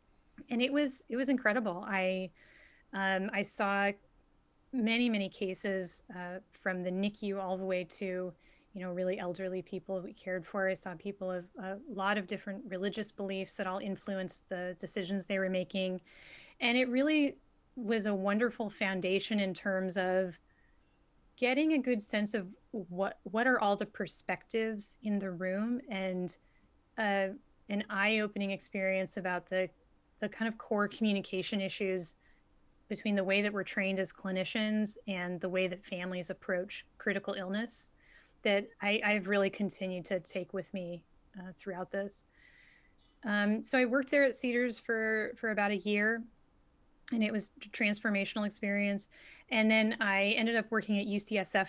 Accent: American